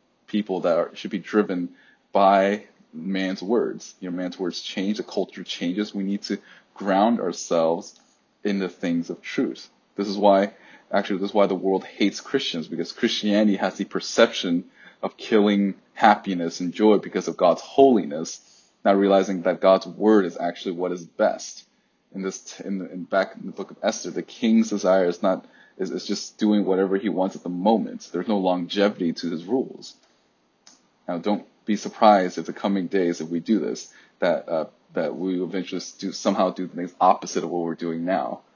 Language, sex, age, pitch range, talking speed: English, male, 20-39, 90-100 Hz, 185 wpm